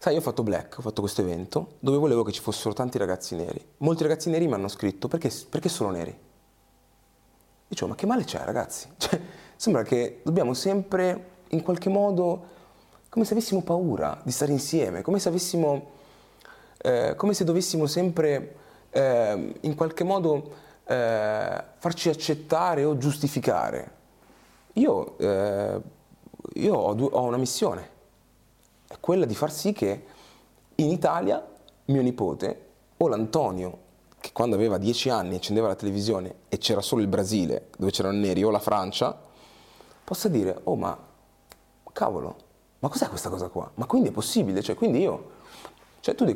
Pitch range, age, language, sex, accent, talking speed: 105-170 Hz, 30-49, Italian, male, native, 155 wpm